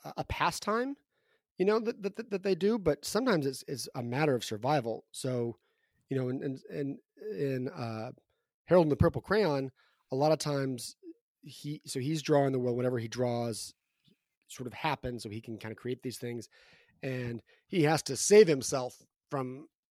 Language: English